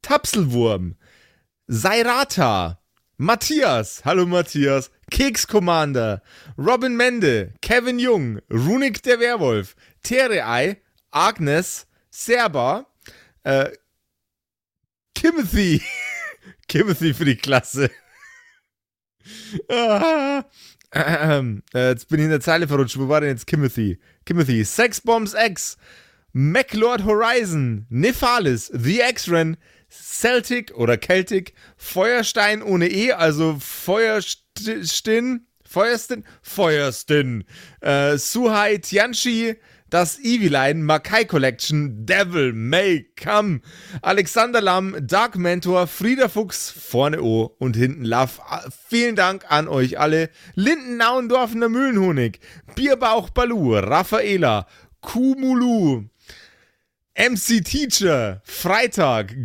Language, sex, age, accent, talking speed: German, male, 30-49, German, 95 wpm